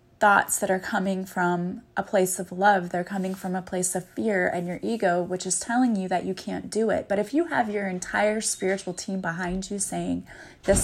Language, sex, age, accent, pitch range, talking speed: English, female, 20-39, American, 185-230 Hz, 220 wpm